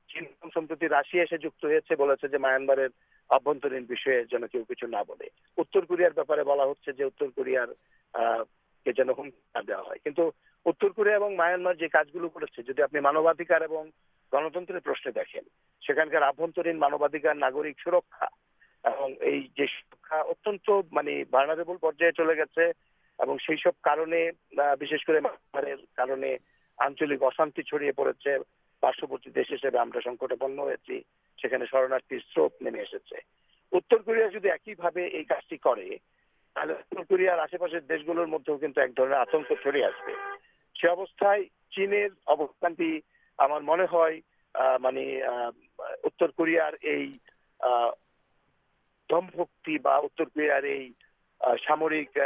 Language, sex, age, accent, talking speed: Bengali, male, 50-69, native, 45 wpm